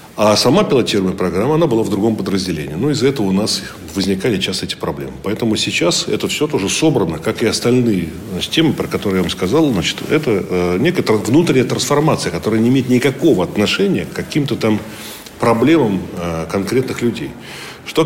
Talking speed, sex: 180 wpm, male